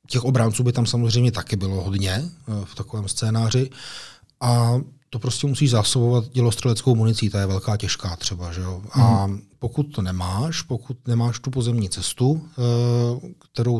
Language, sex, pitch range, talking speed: Czech, male, 115-135 Hz, 150 wpm